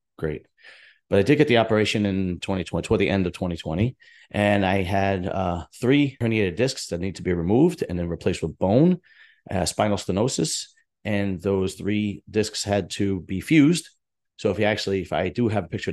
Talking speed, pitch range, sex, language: 195 wpm, 90-105 Hz, male, English